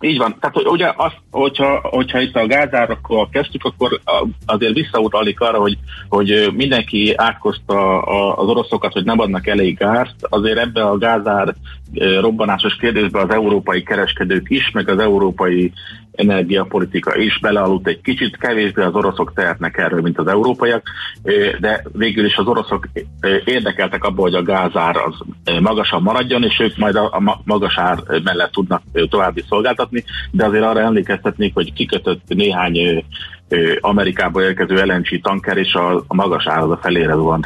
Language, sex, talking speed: Hungarian, male, 145 wpm